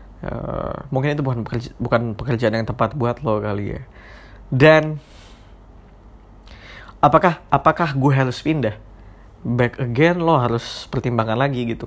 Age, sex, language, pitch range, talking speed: 20-39, male, Indonesian, 110-130 Hz, 130 wpm